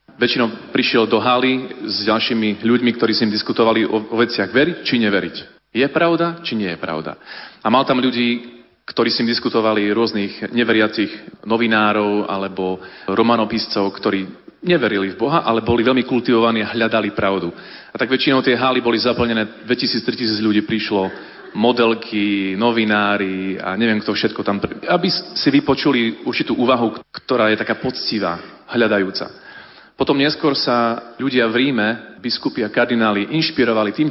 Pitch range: 105-125 Hz